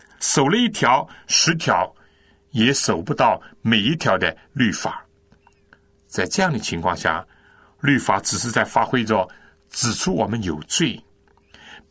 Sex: male